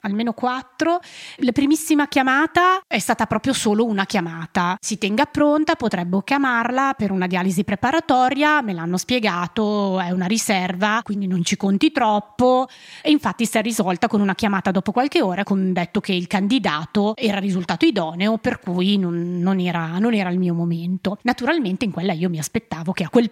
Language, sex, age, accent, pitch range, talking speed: Italian, female, 30-49, native, 190-255 Hz, 180 wpm